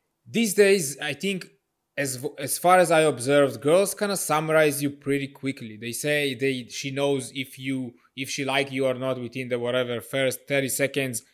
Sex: male